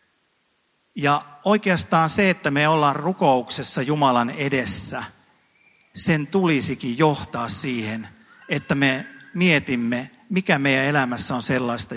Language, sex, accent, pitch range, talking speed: Finnish, male, native, 130-155 Hz, 105 wpm